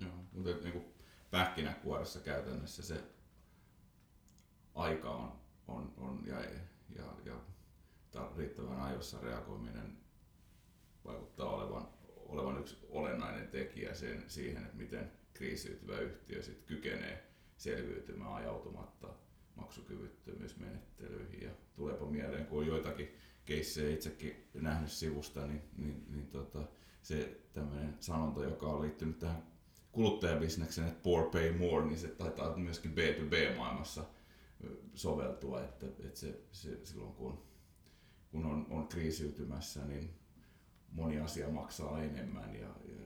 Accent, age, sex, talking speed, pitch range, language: native, 30-49, male, 115 wpm, 75-85 Hz, Finnish